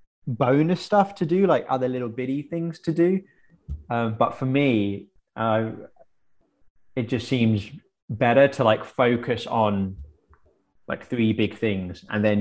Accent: British